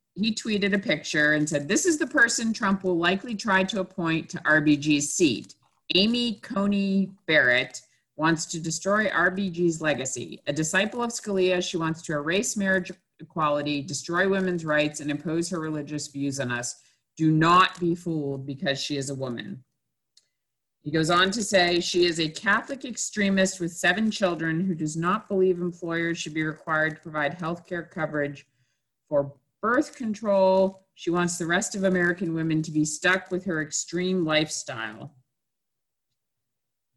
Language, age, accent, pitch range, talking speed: English, 50-69, American, 155-200 Hz, 160 wpm